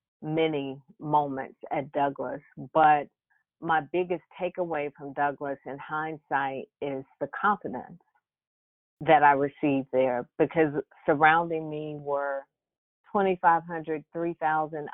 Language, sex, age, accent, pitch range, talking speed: English, female, 40-59, American, 145-165 Hz, 100 wpm